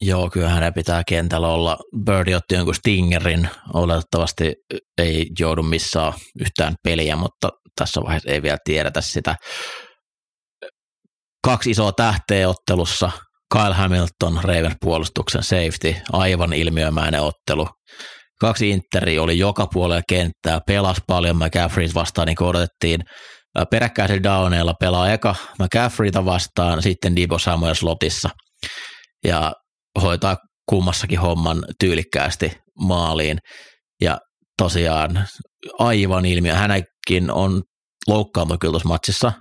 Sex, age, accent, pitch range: male, 30-49, native, 80-95 Hz